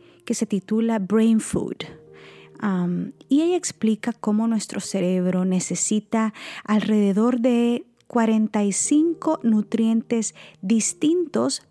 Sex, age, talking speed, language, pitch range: female, 30-49, 90 wpm, Spanish, 185-235 Hz